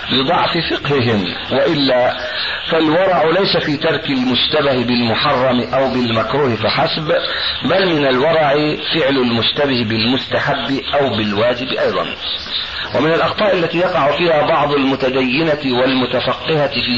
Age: 50-69